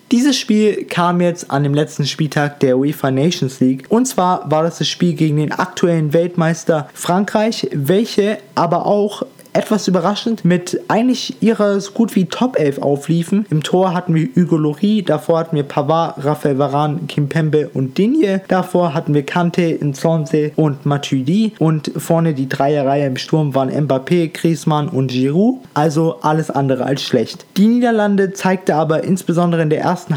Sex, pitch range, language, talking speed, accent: male, 145-180 Hz, German, 165 wpm, German